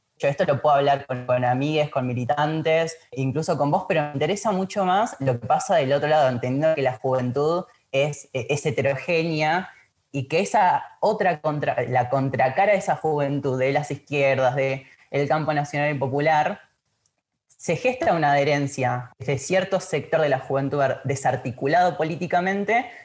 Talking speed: 160 wpm